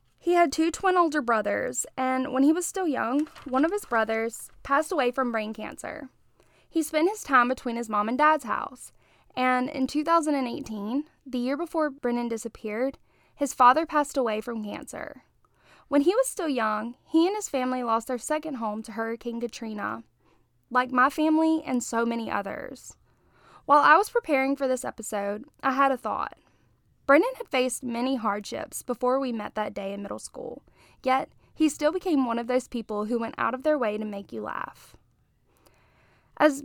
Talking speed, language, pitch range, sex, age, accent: 180 wpm, English, 230-300 Hz, female, 10-29, American